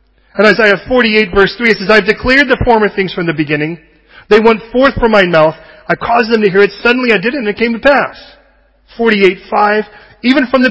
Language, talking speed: English, 230 wpm